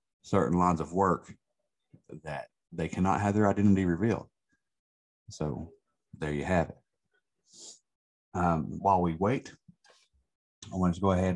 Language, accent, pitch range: English, American, 85-95 Hz